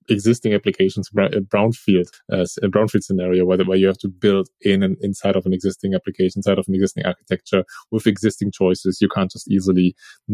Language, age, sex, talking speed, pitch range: English, 20-39, male, 205 wpm, 100-120 Hz